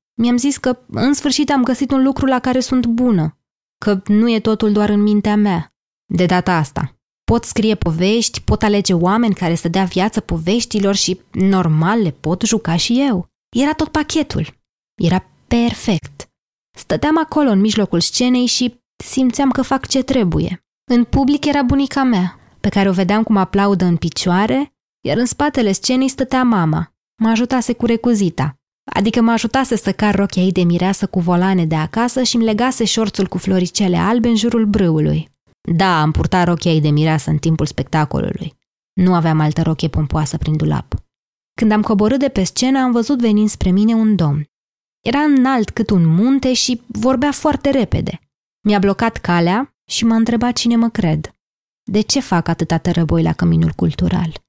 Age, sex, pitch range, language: 20-39, female, 180-245 Hz, Romanian